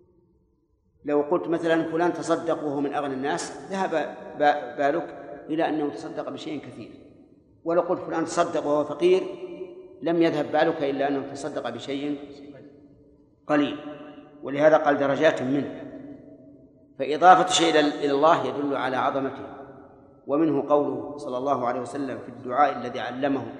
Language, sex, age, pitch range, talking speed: Arabic, male, 50-69, 135-165 Hz, 130 wpm